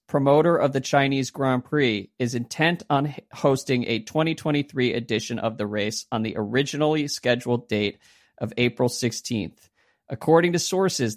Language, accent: English, American